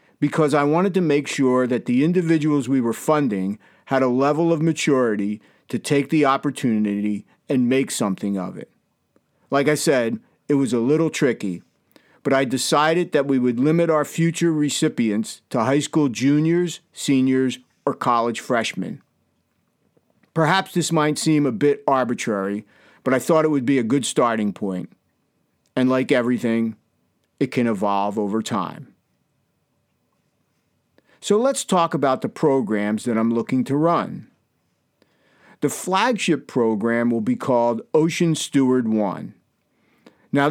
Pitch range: 120-155 Hz